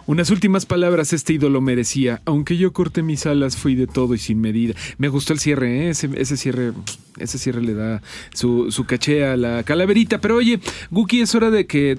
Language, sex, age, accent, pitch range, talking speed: Spanish, male, 40-59, Mexican, 125-160 Hz, 210 wpm